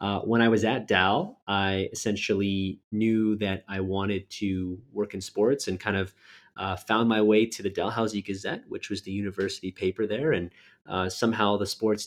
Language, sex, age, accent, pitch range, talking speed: English, male, 30-49, American, 95-110 Hz, 190 wpm